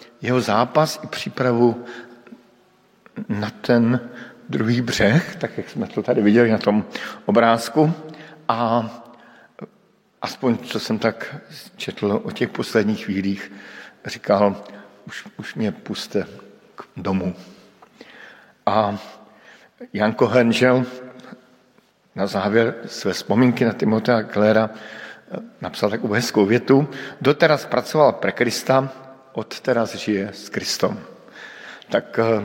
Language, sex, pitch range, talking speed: Slovak, male, 105-125 Hz, 105 wpm